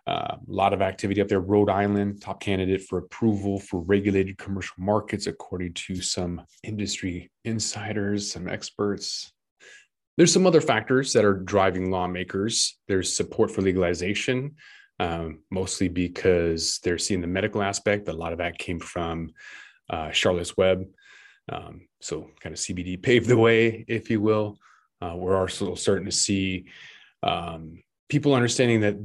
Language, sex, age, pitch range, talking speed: English, male, 20-39, 90-105 Hz, 150 wpm